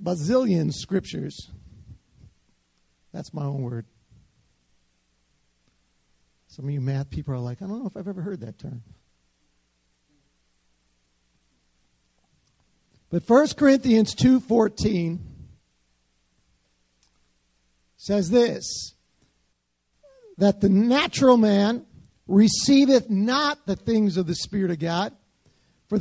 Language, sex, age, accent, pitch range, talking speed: English, male, 50-69, American, 165-240 Hz, 95 wpm